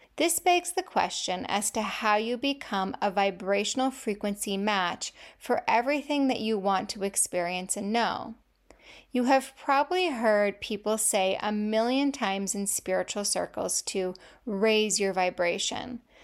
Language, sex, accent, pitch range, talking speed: English, female, American, 195-260 Hz, 140 wpm